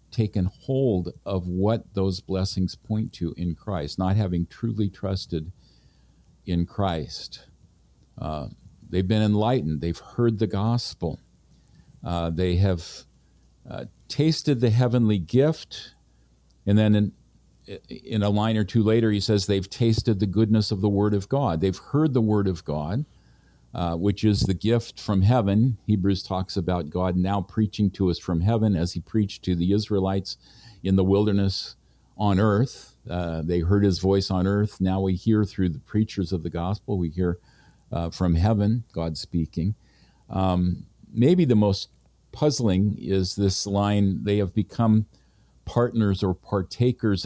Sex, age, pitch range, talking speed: male, 50-69, 90-110 Hz, 155 wpm